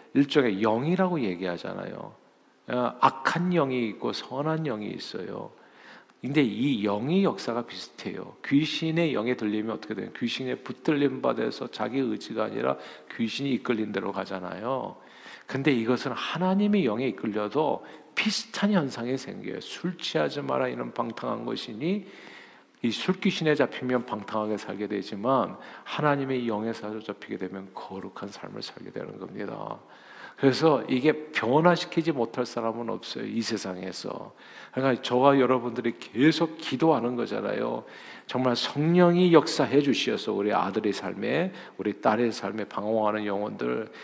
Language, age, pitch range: Korean, 50-69, 120-175 Hz